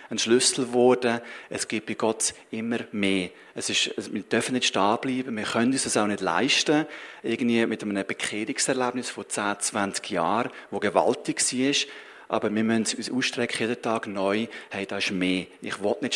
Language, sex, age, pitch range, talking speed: German, male, 40-59, 105-130 Hz, 180 wpm